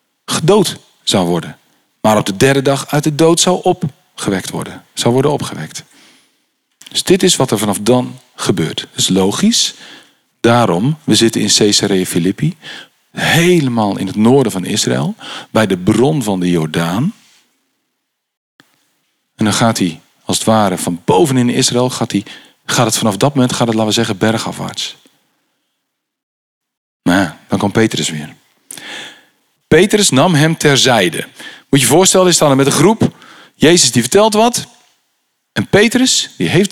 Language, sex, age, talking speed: Dutch, male, 40-59, 160 wpm